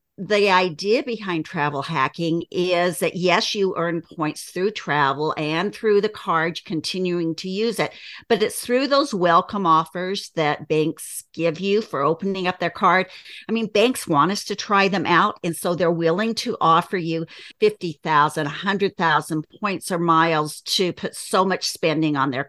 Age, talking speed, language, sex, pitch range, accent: 50-69, 180 wpm, English, female, 165-215 Hz, American